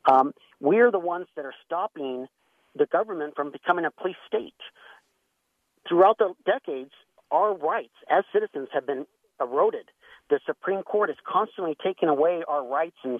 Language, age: English, 50-69